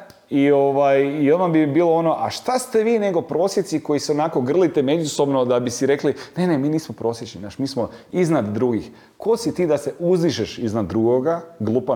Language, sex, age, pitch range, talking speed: Croatian, male, 30-49, 110-145 Hz, 210 wpm